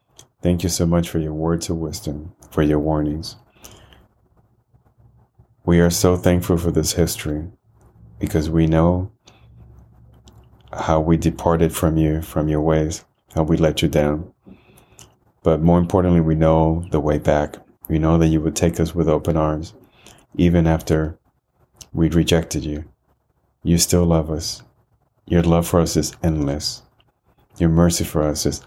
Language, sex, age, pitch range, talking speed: English, male, 30-49, 75-90 Hz, 155 wpm